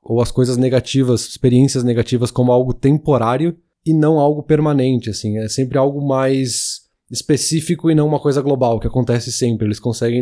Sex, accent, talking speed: male, Brazilian, 170 wpm